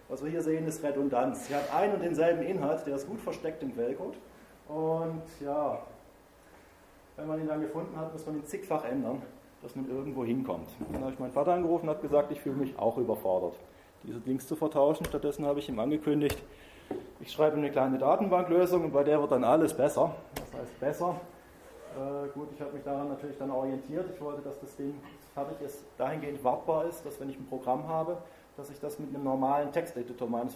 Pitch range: 135-155 Hz